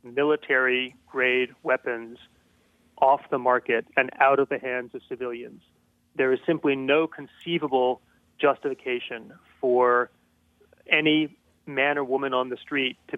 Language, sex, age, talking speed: English, male, 30-49, 130 wpm